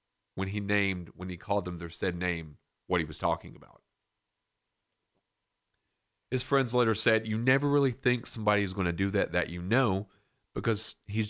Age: 40-59